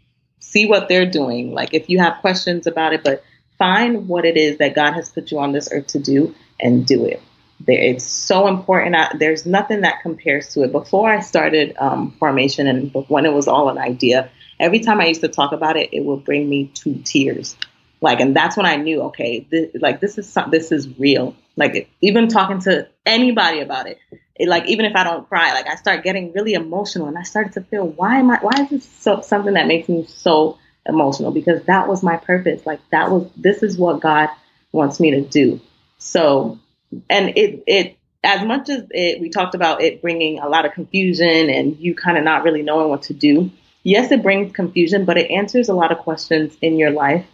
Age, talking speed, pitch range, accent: 30-49, 220 wpm, 155-195 Hz, American